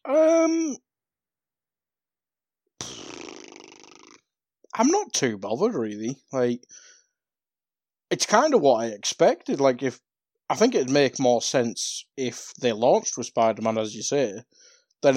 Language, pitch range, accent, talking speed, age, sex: English, 110-185 Hz, British, 120 wpm, 20-39, male